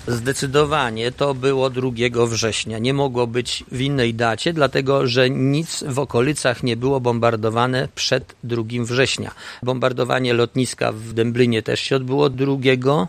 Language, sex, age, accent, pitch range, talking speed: Polish, male, 50-69, native, 125-145 Hz, 140 wpm